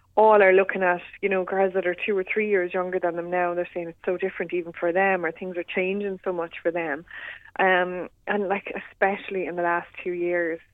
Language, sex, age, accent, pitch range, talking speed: English, female, 20-39, Irish, 165-190 Hz, 240 wpm